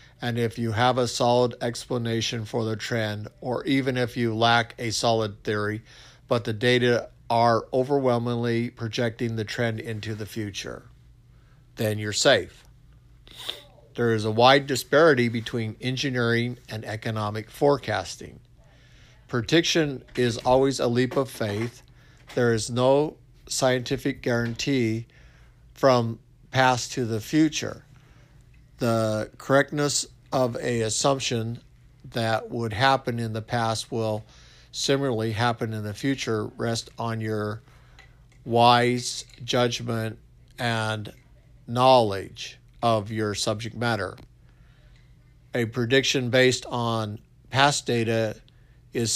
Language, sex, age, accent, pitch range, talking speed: English, male, 50-69, American, 115-130 Hz, 115 wpm